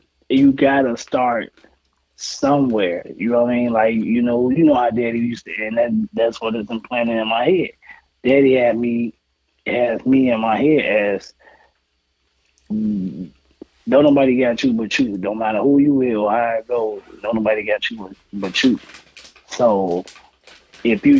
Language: English